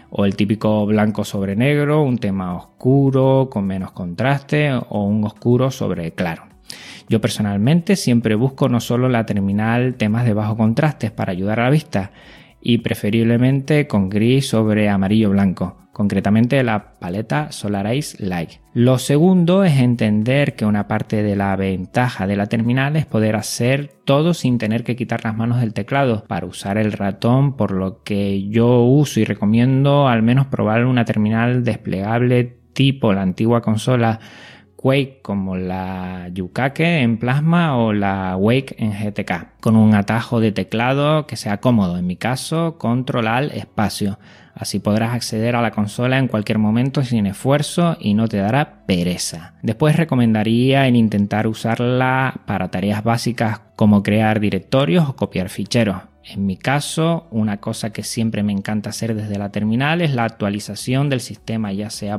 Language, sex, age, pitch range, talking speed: Spanish, male, 20-39, 105-130 Hz, 160 wpm